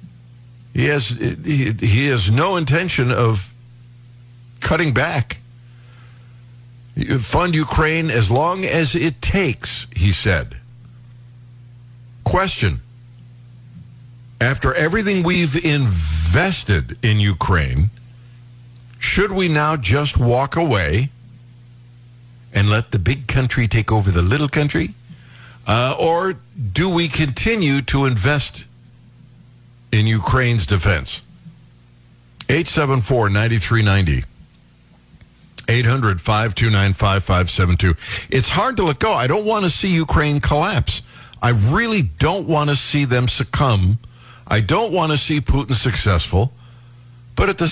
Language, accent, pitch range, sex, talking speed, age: English, American, 115-145 Hz, male, 105 wpm, 60-79